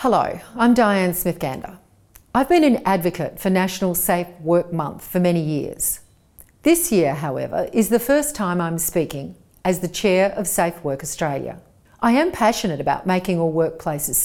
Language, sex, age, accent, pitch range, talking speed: English, female, 40-59, Australian, 160-230 Hz, 165 wpm